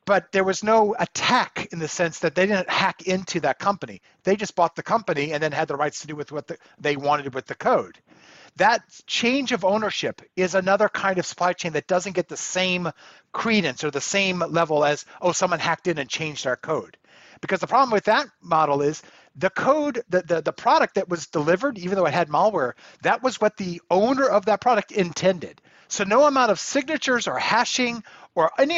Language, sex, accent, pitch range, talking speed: English, male, American, 165-220 Hz, 215 wpm